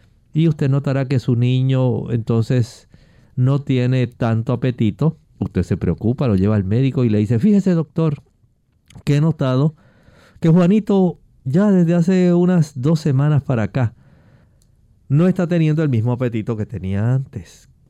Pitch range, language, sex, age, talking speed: 105-145 Hz, Spanish, male, 50-69, 150 wpm